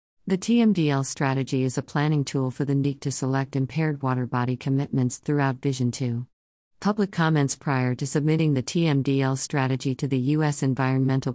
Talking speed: 165 wpm